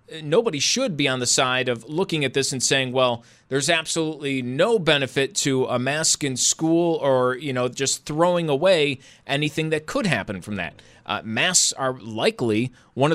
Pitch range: 115-160 Hz